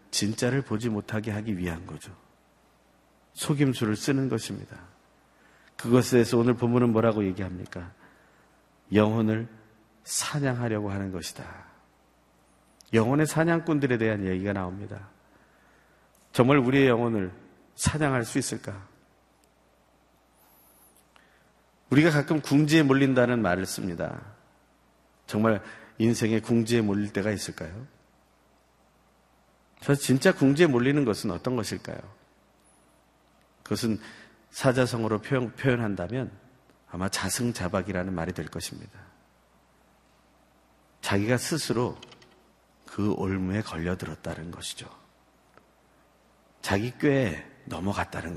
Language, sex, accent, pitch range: Korean, male, native, 85-125 Hz